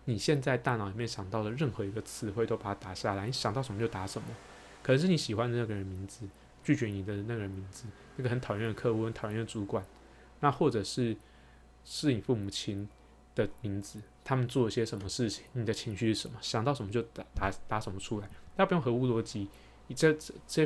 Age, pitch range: 20-39, 100-125 Hz